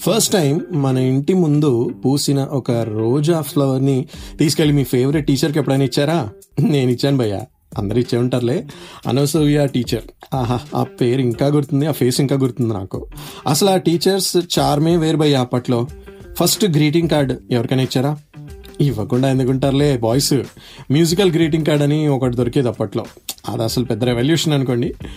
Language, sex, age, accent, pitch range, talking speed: Telugu, male, 30-49, native, 120-150 Hz, 145 wpm